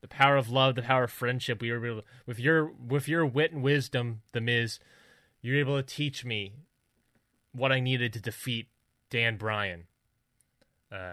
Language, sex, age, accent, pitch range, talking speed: English, male, 20-39, American, 115-135 Hz, 180 wpm